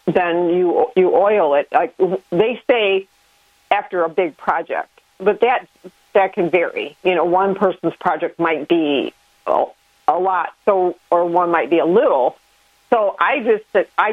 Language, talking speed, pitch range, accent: English, 160 wpm, 170-200 Hz, American